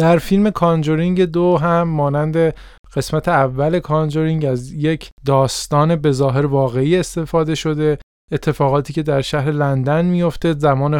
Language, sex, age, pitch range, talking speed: Persian, male, 20-39, 140-165 Hz, 125 wpm